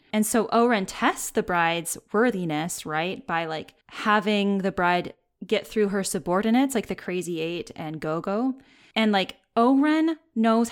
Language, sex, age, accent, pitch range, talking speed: English, female, 20-39, American, 185-240 Hz, 155 wpm